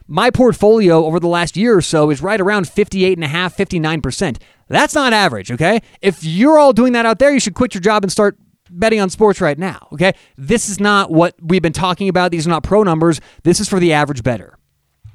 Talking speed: 220 wpm